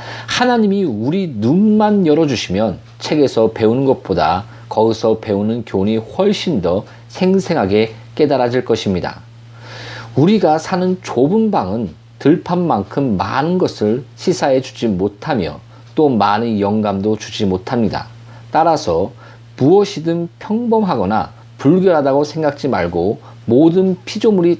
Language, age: Korean, 40-59